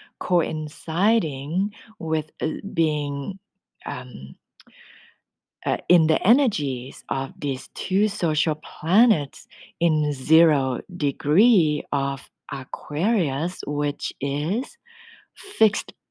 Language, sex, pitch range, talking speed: English, female, 140-180 Hz, 80 wpm